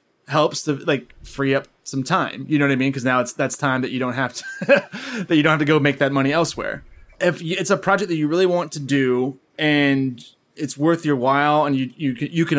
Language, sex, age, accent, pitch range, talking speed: English, male, 20-39, American, 135-160 Hz, 255 wpm